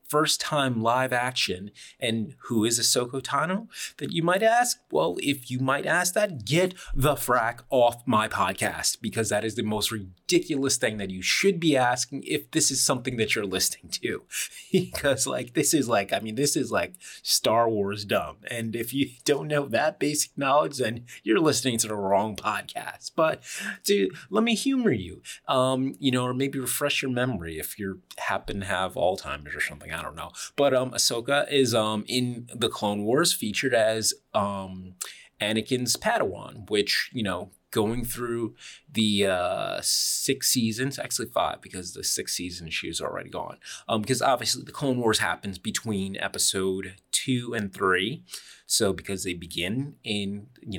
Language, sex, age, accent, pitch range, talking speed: English, male, 30-49, American, 105-140 Hz, 175 wpm